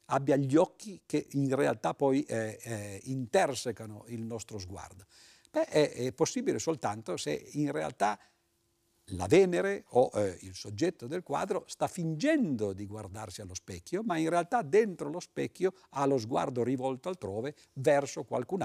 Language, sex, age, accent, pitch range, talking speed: Italian, male, 50-69, native, 110-170 Hz, 150 wpm